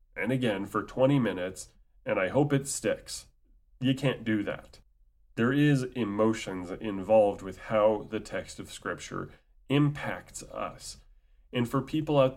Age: 30-49